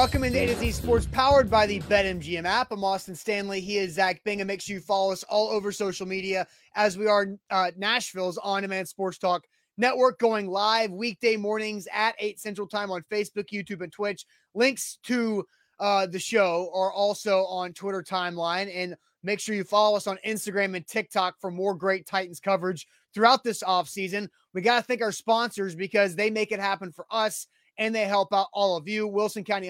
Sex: male